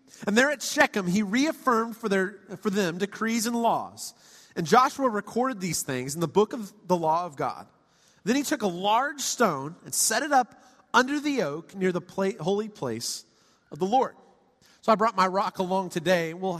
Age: 30-49